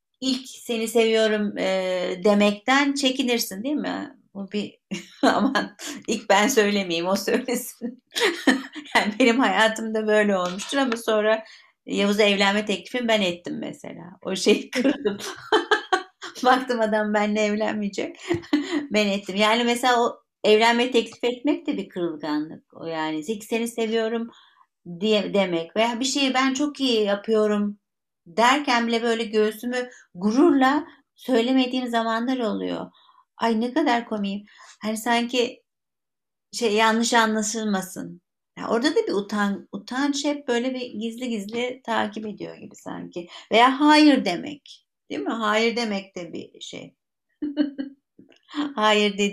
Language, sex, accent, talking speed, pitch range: Turkish, female, native, 125 wpm, 205-260 Hz